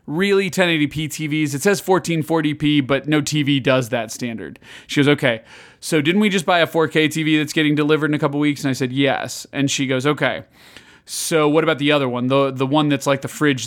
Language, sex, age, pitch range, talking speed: English, male, 30-49, 130-155 Hz, 225 wpm